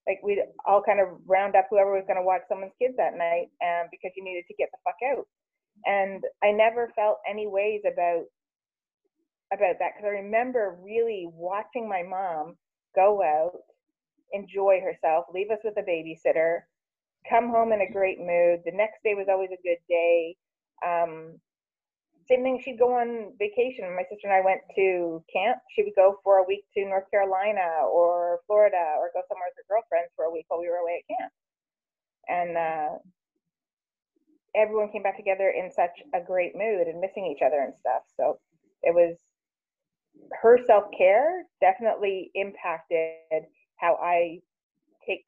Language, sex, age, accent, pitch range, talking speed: English, female, 30-49, American, 175-225 Hz, 170 wpm